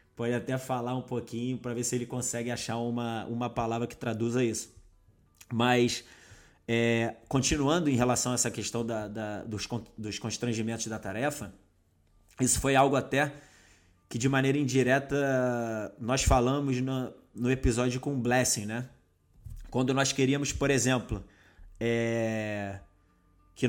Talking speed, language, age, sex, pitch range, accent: 130 wpm, Portuguese, 20-39, male, 105-135 Hz, Brazilian